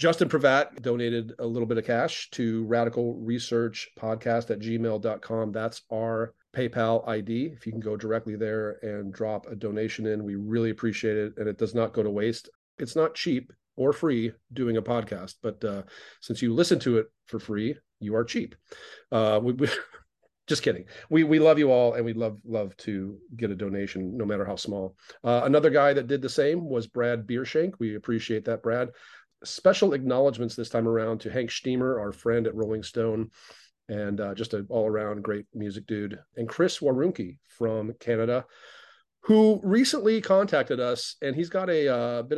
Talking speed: 185 wpm